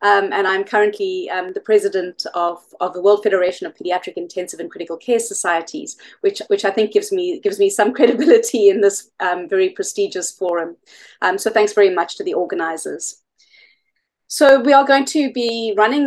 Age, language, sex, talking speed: 30-49, English, female, 185 wpm